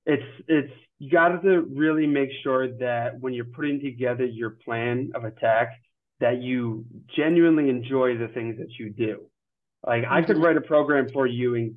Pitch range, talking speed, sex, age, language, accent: 120-145 Hz, 180 wpm, male, 30-49, English, American